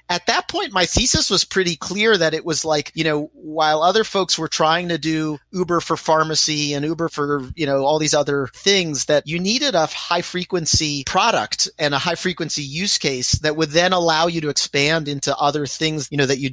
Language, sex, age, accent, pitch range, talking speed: English, male, 30-49, American, 145-175 Hz, 210 wpm